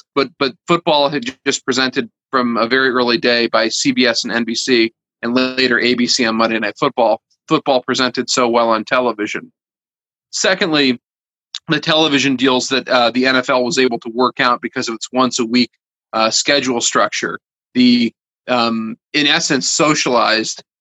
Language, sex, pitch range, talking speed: English, male, 115-130 Hz, 155 wpm